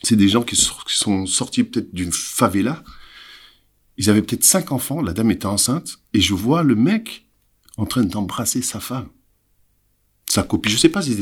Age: 50-69